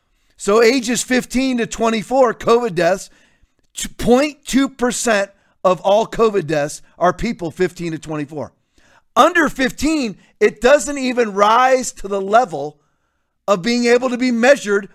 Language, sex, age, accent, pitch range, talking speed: English, male, 40-59, American, 170-240 Hz, 130 wpm